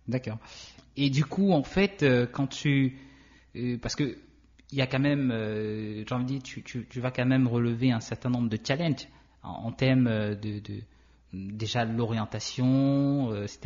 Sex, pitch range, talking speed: male, 110-140 Hz, 170 wpm